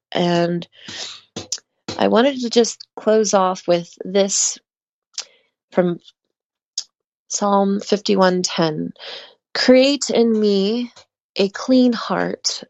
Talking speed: 85 wpm